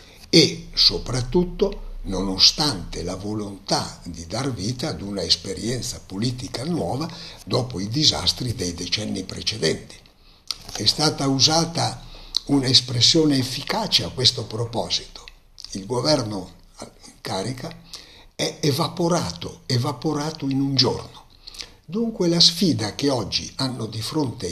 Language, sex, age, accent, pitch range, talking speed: Italian, male, 60-79, native, 95-135 Hz, 110 wpm